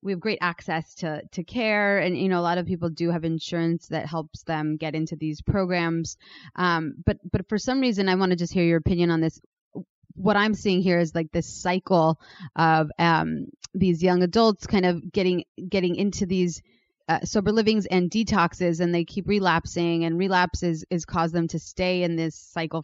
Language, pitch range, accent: English, 165-190 Hz, American